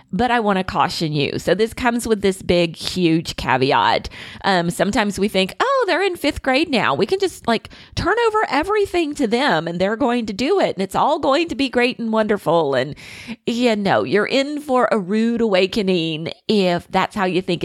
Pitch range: 170-240 Hz